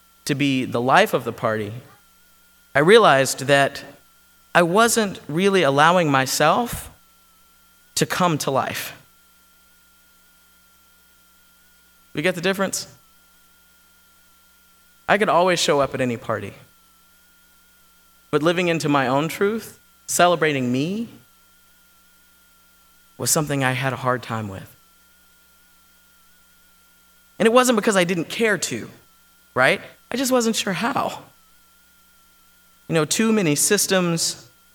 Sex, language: male, English